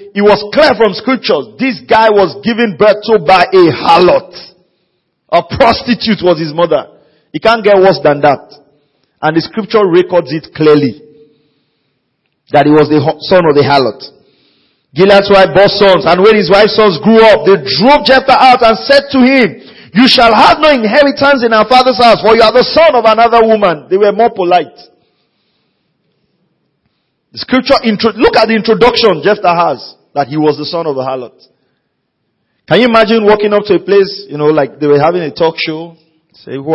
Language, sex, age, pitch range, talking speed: English, male, 40-59, 150-225 Hz, 185 wpm